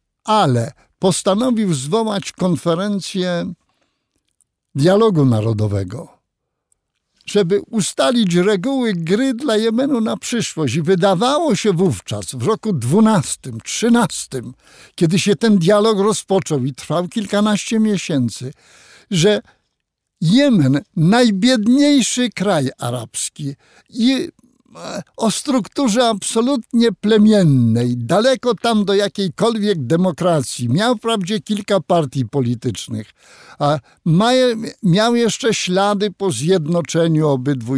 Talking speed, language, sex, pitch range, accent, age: 95 wpm, Polish, male, 135-220 Hz, native, 60-79